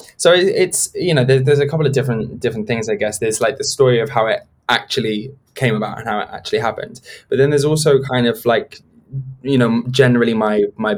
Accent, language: British, English